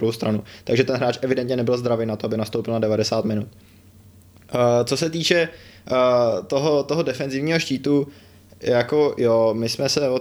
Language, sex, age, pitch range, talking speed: Czech, male, 20-39, 115-145 Hz, 155 wpm